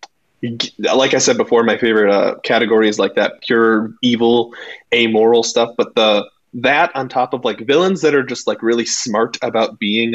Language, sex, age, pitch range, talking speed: English, male, 20-39, 115-140 Hz, 185 wpm